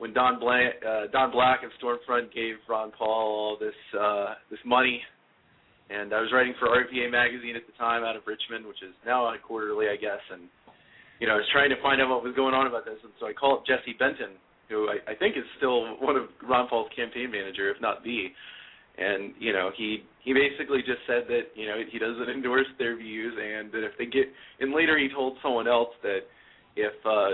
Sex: male